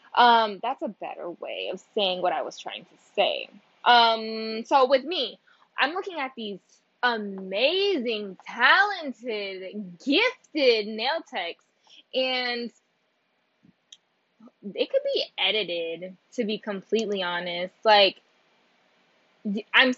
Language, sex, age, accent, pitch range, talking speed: English, female, 10-29, American, 200-285 Hz, 110 wpm